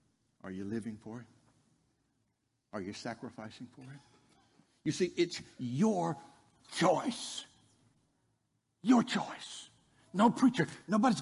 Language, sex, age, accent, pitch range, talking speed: English, male, 60-79, American, 105-135 Hz, 105 wpm